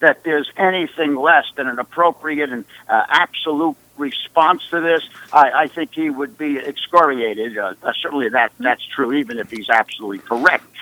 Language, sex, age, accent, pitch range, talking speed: English, male, 60-79, American, 140-170 Hz, 170 wpm